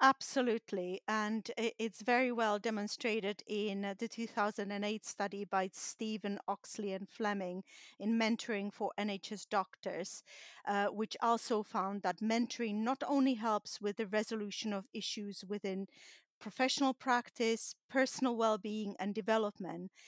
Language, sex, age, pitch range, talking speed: English, female, 40-59, 200-235 Hz, 125 wpm